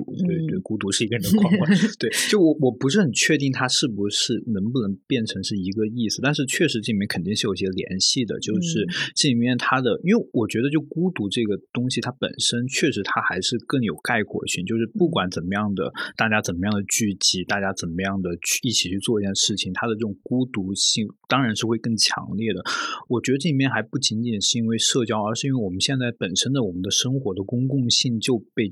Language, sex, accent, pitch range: Chinese, male, native, 105-125 Hz